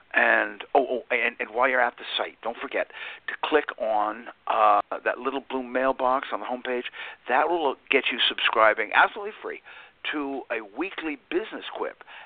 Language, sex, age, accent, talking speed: English, male, 60-79, American, 170 wpm